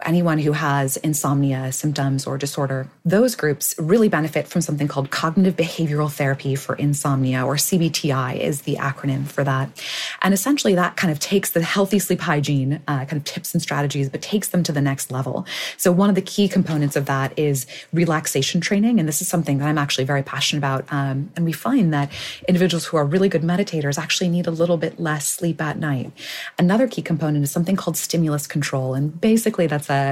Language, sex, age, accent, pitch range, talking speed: English, female, 20-39, American, 140-175 Hz, 200 wpm